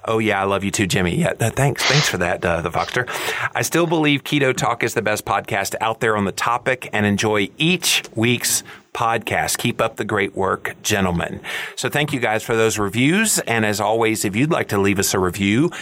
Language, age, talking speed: English, 30-49, 220 wpm